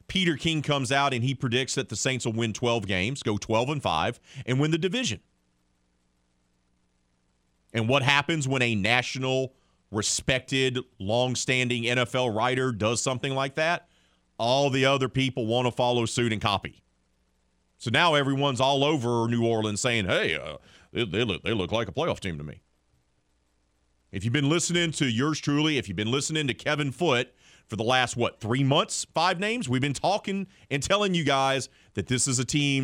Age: 40-59